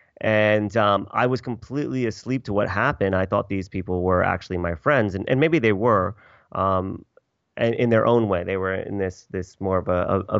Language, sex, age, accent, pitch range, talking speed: English, male, 30-49, American, 95-115 Hz, 210 wpm